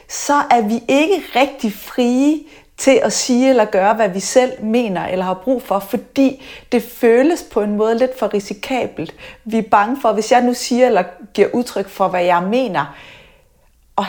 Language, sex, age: Danish, female, 30-49